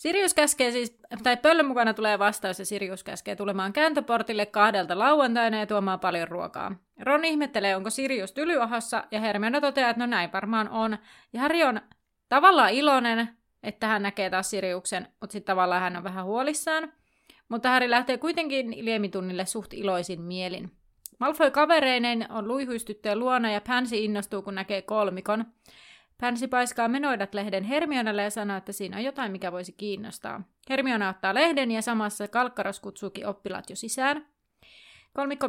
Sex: female